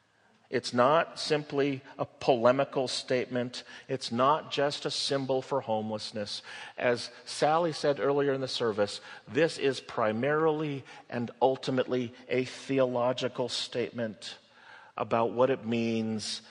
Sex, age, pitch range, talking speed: male, 40-59, 105-130 Hz, 115 wpm